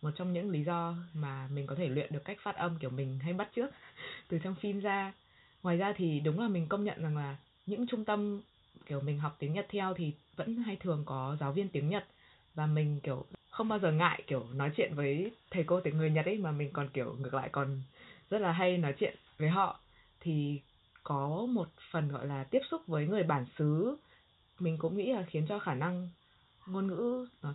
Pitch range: 140-185 Hz